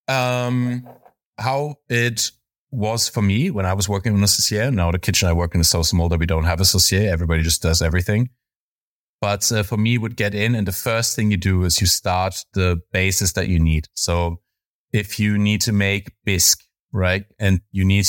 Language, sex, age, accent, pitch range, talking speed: English, male, 30-49, German, 95-110 Hz, 210 wpm